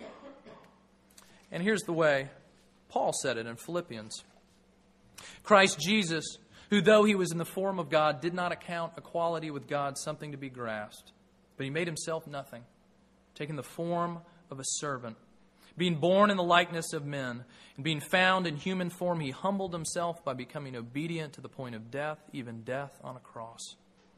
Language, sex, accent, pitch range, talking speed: English, male, American, 135-175 Hz, 175 wpm